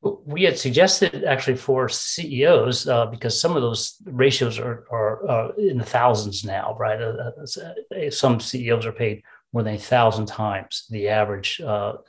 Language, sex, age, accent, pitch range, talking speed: English, male, 40-59, American, 110-135 Hz, 160 wpm